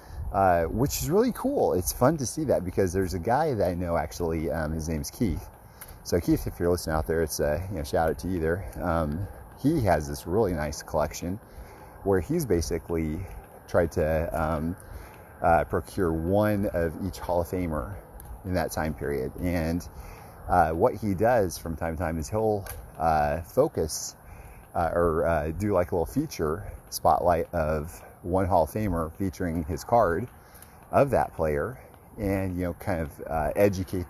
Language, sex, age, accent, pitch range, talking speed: English, male, 30-49, American, 80-95 Hz, 185 wpm